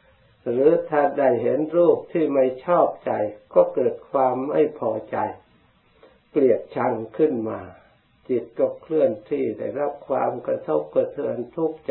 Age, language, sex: 60-79, Thai, male